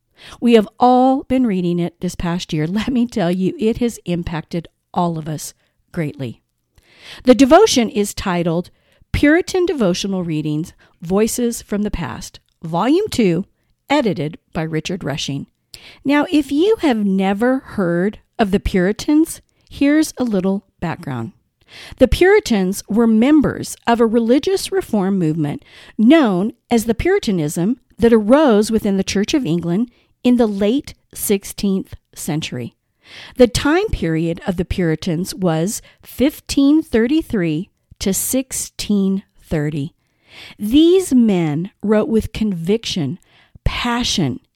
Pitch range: 175-250 Hz